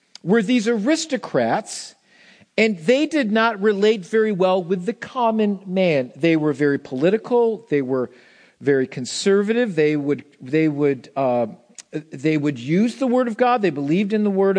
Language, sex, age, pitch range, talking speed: English, male, 50-69, 160-225 Hz, 160 wpm